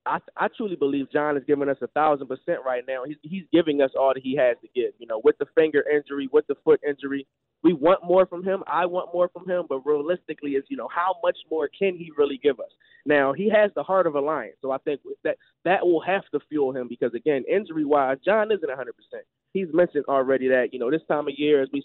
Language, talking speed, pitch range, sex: English, 260 wpm, 140-190 Hz, male